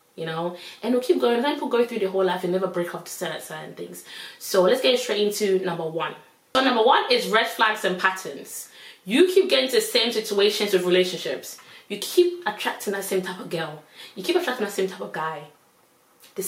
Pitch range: 180-225 Hz